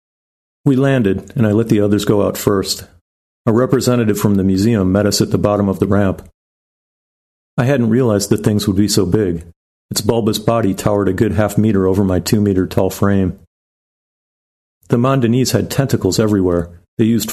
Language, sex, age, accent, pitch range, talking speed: English, male, 50-69, American, 95-110 Hz, 175 wpm